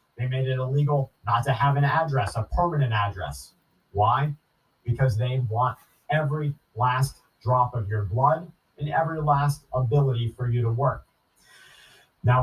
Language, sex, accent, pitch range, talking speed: English, male, American, 115-140 Hz, 150 wpm